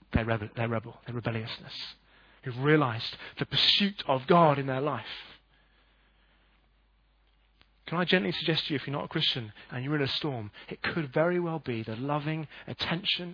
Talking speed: 175 wpm